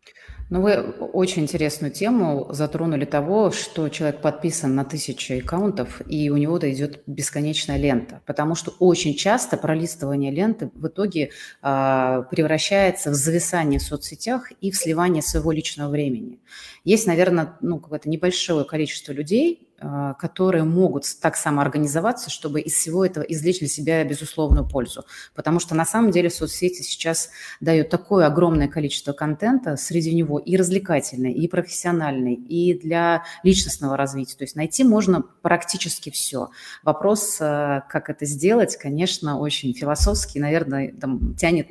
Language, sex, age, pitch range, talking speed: Russian, female, 30-49, 145-180 Hz, 140 wpm